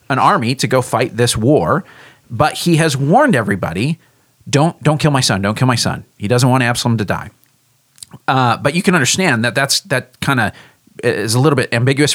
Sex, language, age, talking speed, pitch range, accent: male, English, 30-49, 210 wpm, 110-140 Hz, American